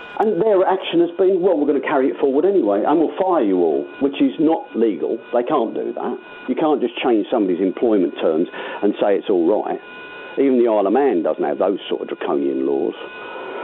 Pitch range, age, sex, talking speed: 300-480 Hz, 50-69, male, 220 wpm